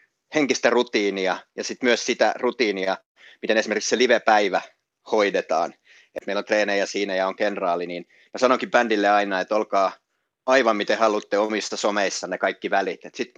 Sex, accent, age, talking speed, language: male, native, 30-49, 160 wpm, Finnish